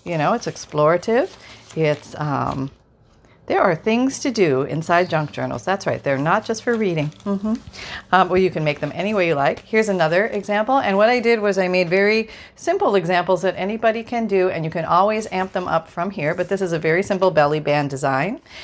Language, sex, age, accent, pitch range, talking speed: English, female, 40-59, American, 155-200 Hz, 215 wpm